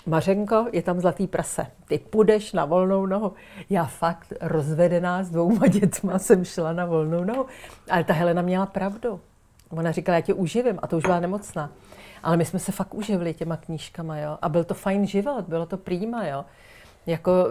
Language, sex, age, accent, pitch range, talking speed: Czech, female, 40-59, native, 170-200 Hz, 190 wpm